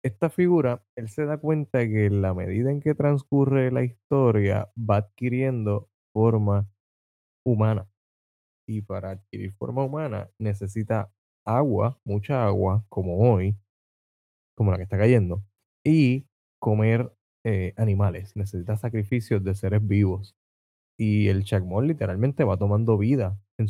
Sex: male